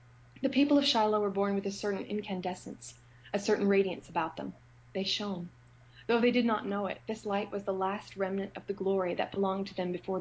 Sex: female